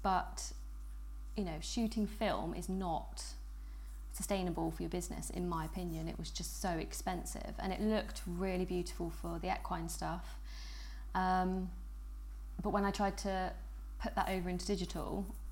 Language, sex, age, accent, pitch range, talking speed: English, female, 20-39, British, 165-195 Hz, 150 wpm